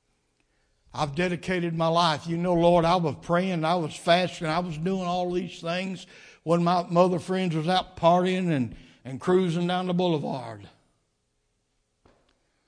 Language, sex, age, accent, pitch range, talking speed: English, male, 60-79, American, 115-175 Hz, 150 wpm